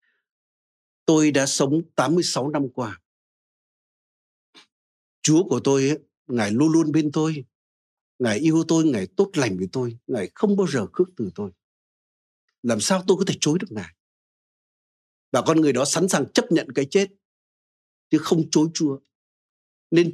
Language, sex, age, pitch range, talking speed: Vietnamese, male, 60-79, 125-185 Hz, 160 wpm